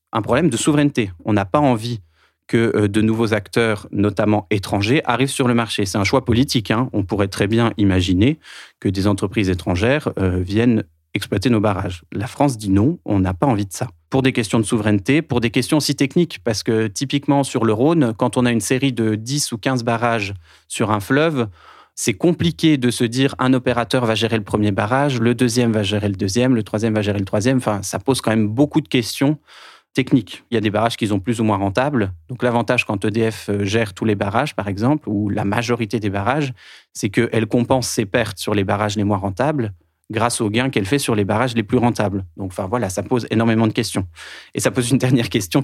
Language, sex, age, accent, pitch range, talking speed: French, male, 30-49, French, 105-130 Hz, 225 wpm